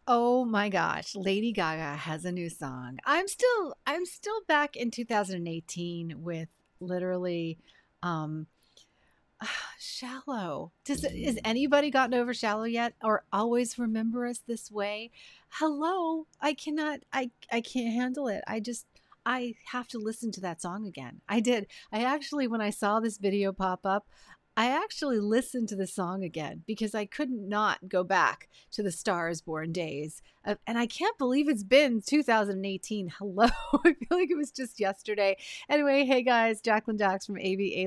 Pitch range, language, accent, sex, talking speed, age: 195-260 Hz, English, American, female, 165 wpm, 40-59